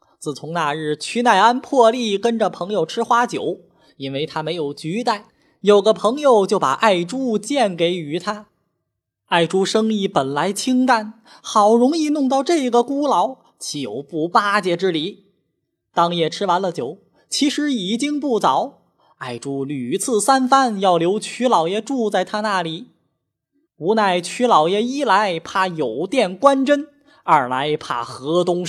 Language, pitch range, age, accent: Chinese, 165-240 Hz, 20-39, native